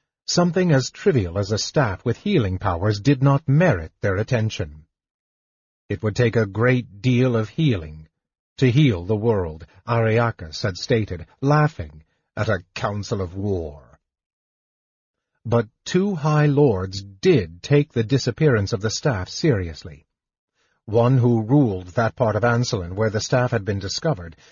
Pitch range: 95-130 Hz